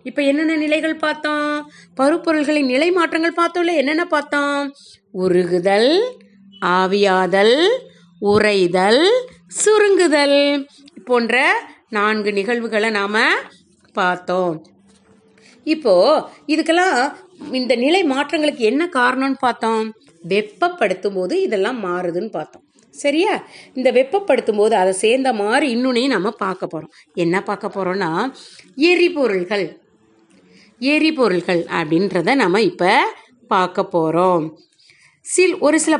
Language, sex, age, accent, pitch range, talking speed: Tamil, female, 30-49, native, 190-300 Hz, 95 wpm